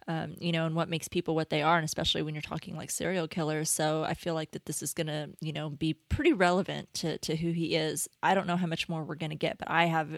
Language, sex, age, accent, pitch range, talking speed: English, female, 20-39, American, 160-185 Hz, 295 wpm